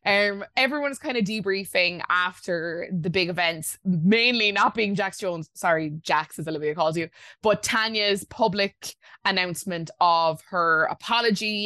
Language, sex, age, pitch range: English, female, 20-39, 160-200 Hz